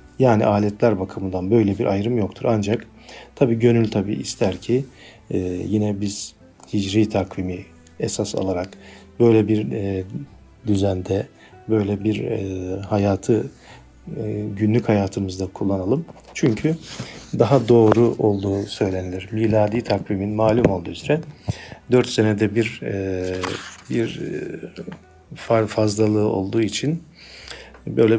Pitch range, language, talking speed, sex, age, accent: 100-115 Hz, Turkish, 110 wpm, male, 50-69, native